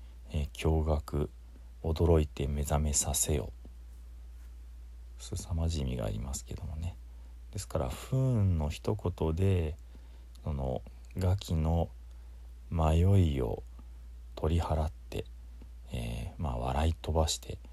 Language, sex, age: Japanese, male, 40-59